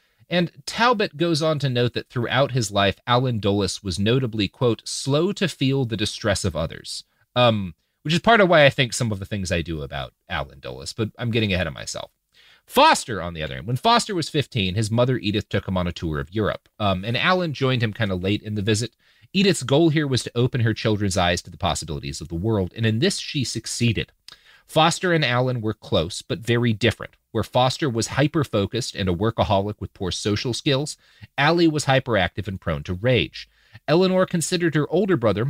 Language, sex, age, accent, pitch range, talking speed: English, male, 30-49, American, 105-150 Hz, 215 wpm